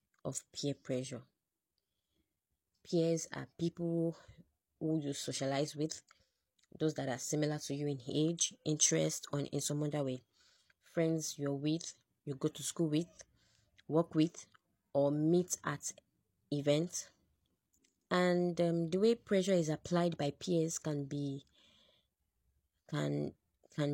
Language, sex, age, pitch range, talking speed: English, female, 20-39, 140-170 Hz, 130 wpm